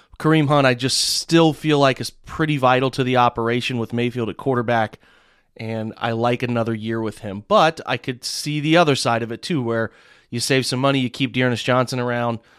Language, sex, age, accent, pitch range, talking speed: English, male, 30-49, American, 120-140 Hz, 210 wpm